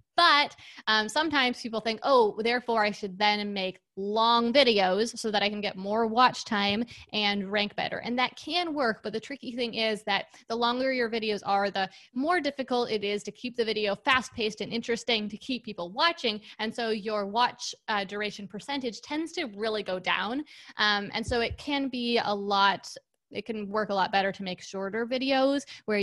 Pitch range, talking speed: 205-245 Hz, 200 wpm